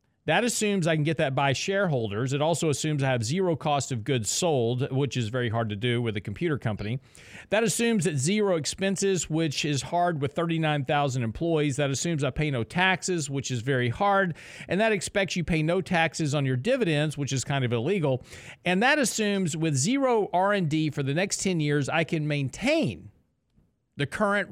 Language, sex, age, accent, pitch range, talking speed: English, male, 40-59, American, 125-170 Hz, 195 wpm